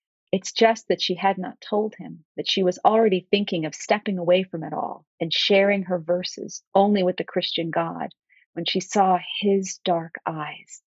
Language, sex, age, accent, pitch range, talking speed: English, female, 40-59, American, 160-210 Hz, 190 wpm